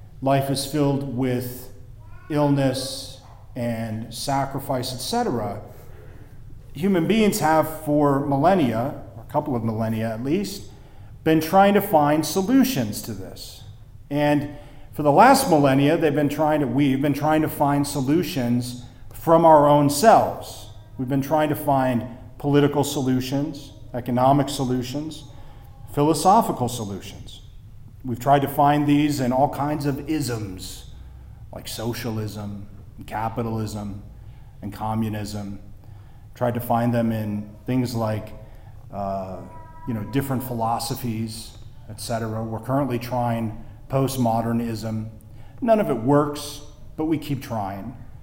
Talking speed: 120 wpm